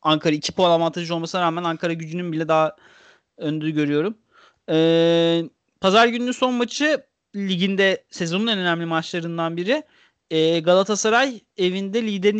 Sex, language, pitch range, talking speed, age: male, Turkish, 180-235 Hz, 130 wpm, 30-49